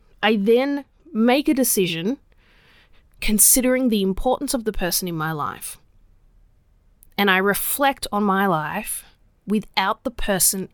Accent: Australian